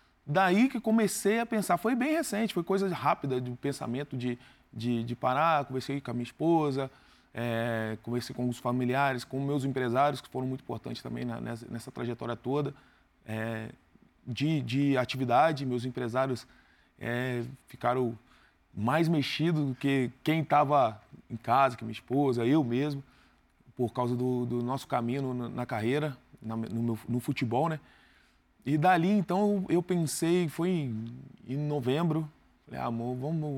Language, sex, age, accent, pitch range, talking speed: Portuguese, male, 20-39, Brazilian, 120-160 Hz, 155 wpm